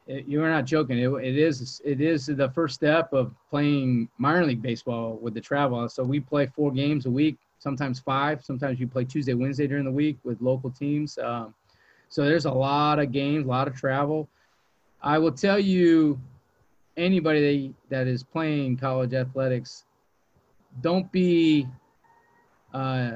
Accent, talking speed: American, 170 wpm